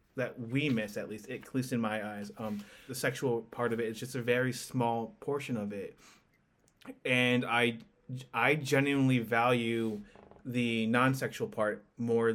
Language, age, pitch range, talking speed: English, 20-39, 115-135 Hz, 160 wpm